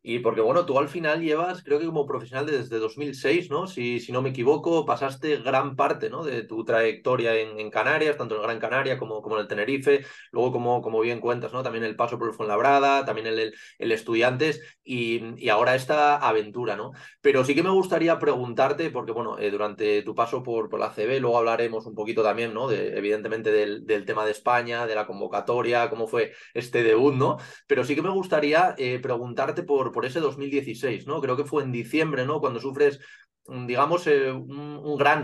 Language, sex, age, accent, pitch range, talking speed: Spanish, male, 20-39, Spanish, 120-155 Hz, 205 wpm